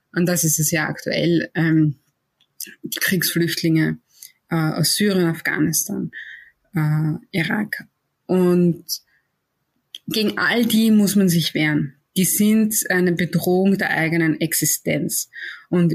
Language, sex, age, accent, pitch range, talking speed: German, female, 20-39, German, 160-195 Hz, 115 wpm